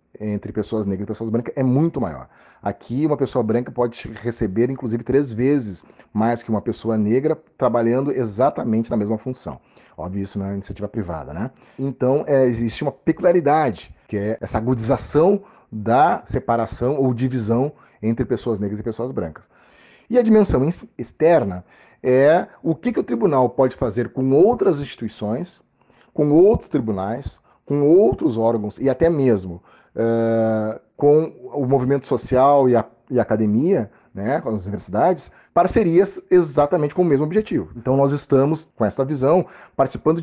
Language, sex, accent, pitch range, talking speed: Portuguese, male, Brazilian, 110-140 Hz, 155 wpm